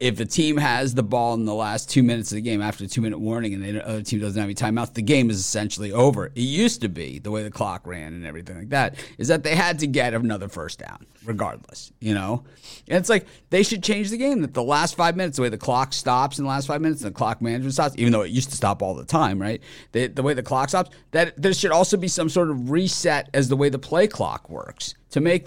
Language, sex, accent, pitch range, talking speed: English, male, American, 105-150 Hz, 280 wpm